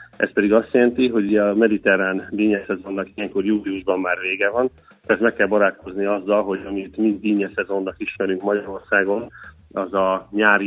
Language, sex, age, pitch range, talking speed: Hungarian, male, 30-49, 100-110 Hz, 150 wpm